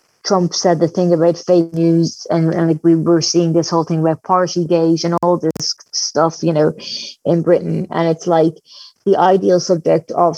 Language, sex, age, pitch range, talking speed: English, female, 20-39, 165-185 Hz, 195 wpm